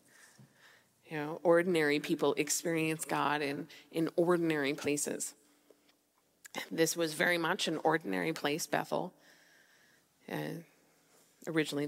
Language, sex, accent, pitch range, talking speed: English, female, American, 150-170 Hz, 100 wpm